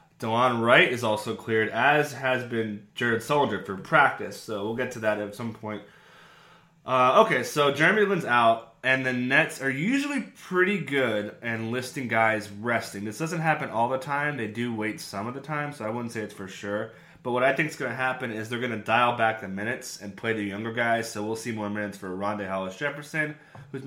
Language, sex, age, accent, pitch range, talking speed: English, male, 20-39, American, 110-135 Hz, 220 wpm